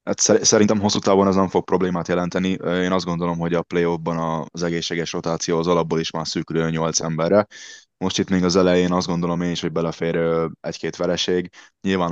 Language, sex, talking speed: Hungarian, male, 195 wpm